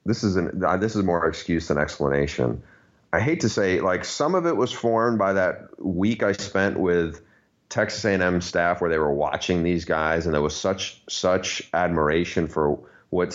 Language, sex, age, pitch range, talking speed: English, male, 30-49, 80-100 Hz, 190 wpm